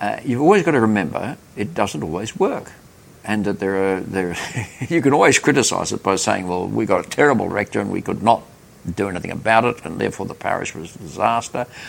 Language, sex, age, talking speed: English, male, 60-79, 220 wpm